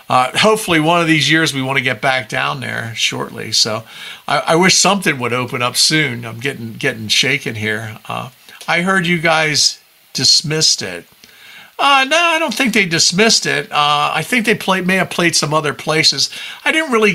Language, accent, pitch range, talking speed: English, American, 125-165 Hz, 200 wpm